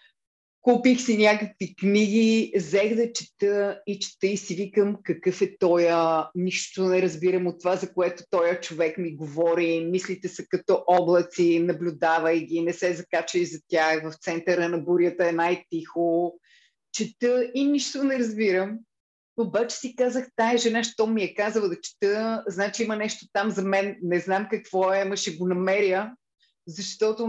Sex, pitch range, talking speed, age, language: female, 175-215 Hz, 165 wpm, 30-49, Bulgarian